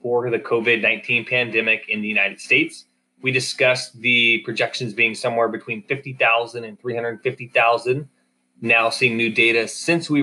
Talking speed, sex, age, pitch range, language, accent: 140 wpm, male, 20-39, 110-130 Hz, English, American